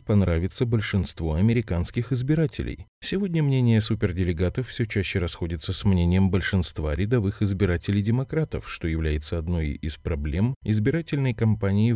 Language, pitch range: Russian, 90-115 Hz